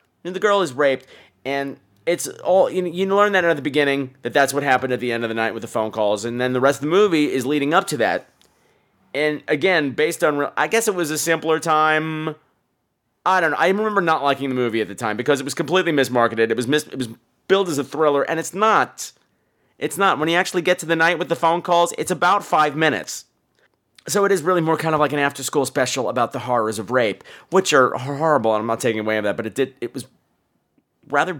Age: 30-49